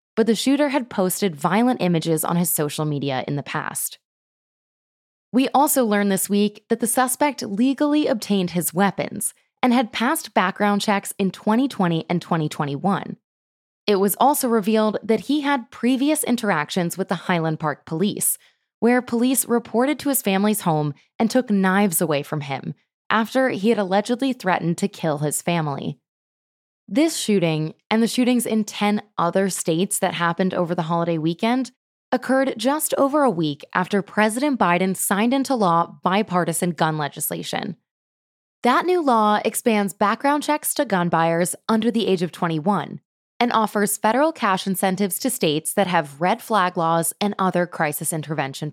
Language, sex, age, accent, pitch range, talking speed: English, female, 20-39, American, 175-240 Hz, 160 wpm